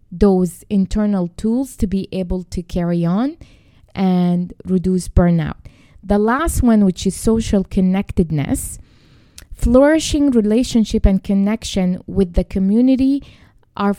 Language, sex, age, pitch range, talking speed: English, female, 20-39, 185-225 Hz, 115 wpm